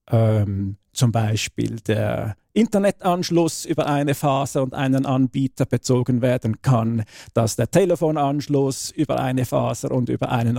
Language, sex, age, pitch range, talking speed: German, male, 50-69, 115-140 Hz, 125 wpm